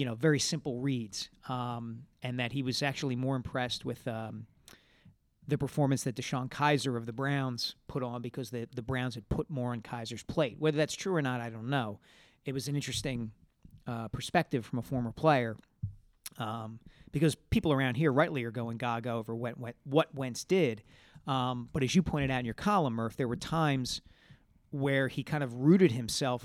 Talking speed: 195 wpm